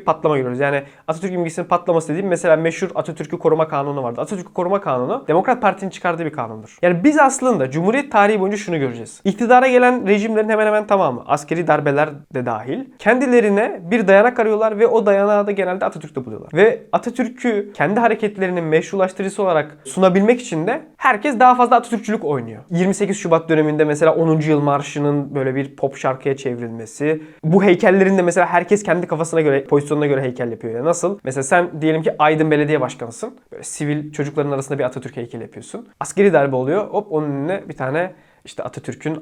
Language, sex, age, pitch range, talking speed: Turkish, male, 20-39, 150-210 Hz, 175 wpm